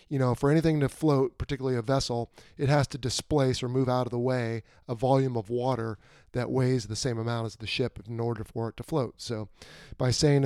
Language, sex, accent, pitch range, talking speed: English, male, American, 125-170 Hz, 230 wpm